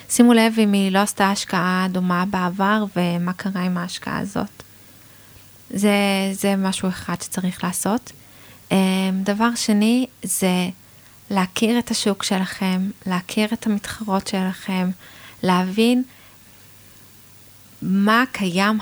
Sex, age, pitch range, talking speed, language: female, 20-39, 175-205 Hz, 110 wpm, Hebrew